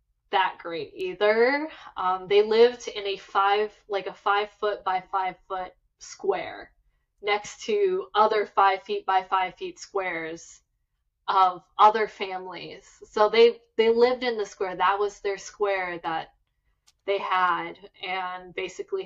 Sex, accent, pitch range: female, American, 185-220 Hz